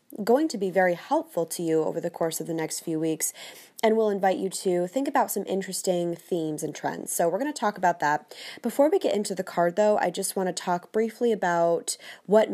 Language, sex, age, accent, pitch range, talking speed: English, female, 20-39, American, 165-195 Hz, 235 wpm